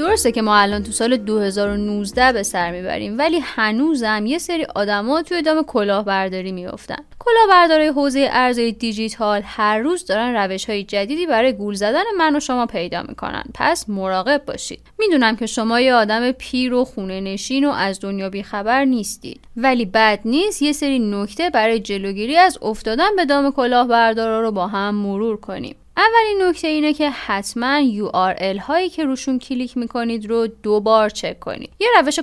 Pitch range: 210-305 Hz